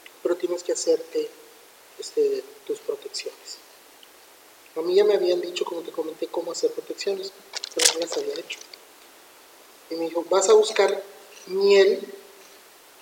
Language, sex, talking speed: Spanish, male, 145 wpm